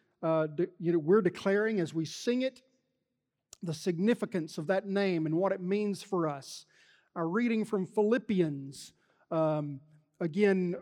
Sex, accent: male, American